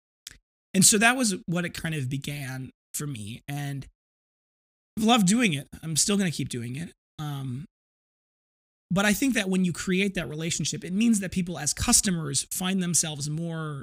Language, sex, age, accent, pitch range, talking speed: English, male, 30-49, American, 140-180 Hz, 180 wpm